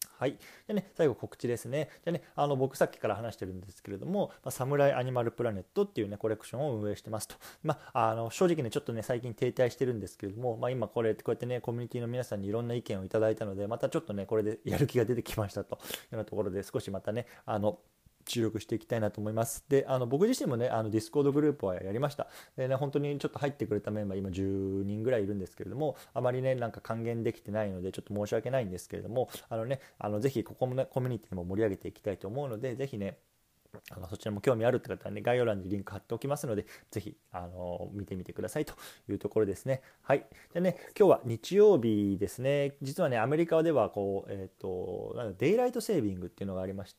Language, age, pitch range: Japanese, 20-39, 100-130 Hz